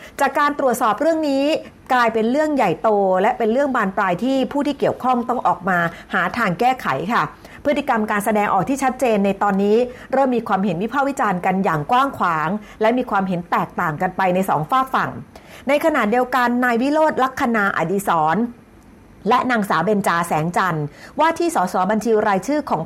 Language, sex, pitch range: Thai, female, 190-260 Hz